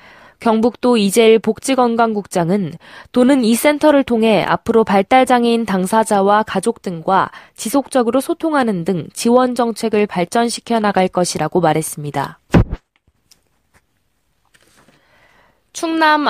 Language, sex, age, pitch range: Korean, female, 20-39, 205-255 Hz